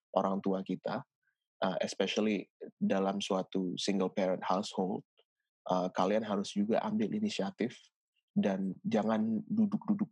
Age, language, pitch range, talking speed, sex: 20-39, Indonesian, 95-110 Hz, 115 wpm, male